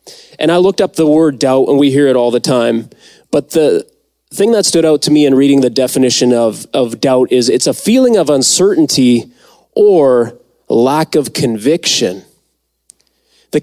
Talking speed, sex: 175 wpm, male